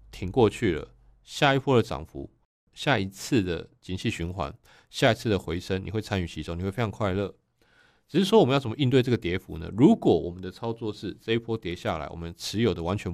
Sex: male